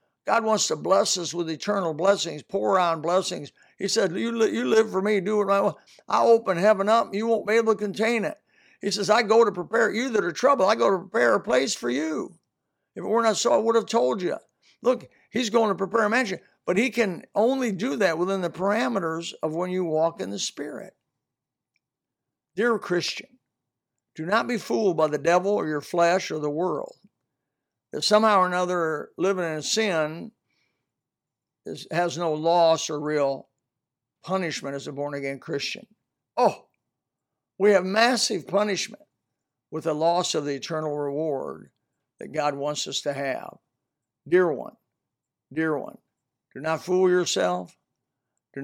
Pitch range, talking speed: 150-210 Hz, 175 wpm